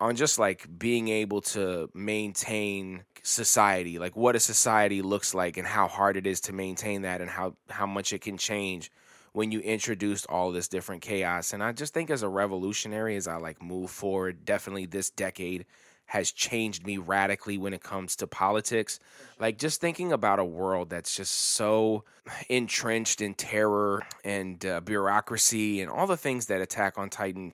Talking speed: 180 wpm